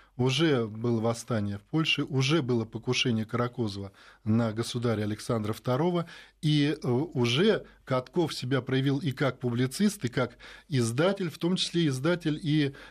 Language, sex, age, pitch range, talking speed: Russian, male, 20-39, 125-165 Hz, 135 wpm